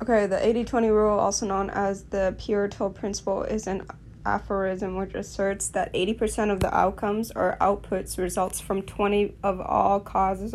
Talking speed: 160 wpm